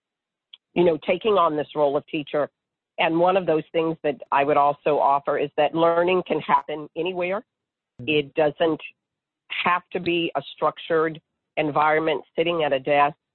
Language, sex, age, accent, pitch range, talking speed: English, female, 50-69, American, 145-170 Hz, 160 wpm